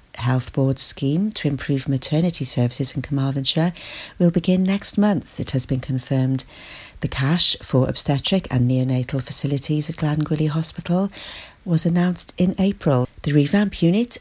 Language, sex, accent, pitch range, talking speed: English, female, British, 135-175 Hz, 145 wpm